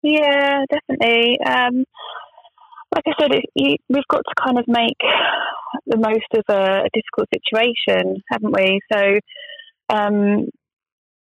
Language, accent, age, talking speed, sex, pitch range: English, British, 20-39, 130 wpm, female, 195-230 Hz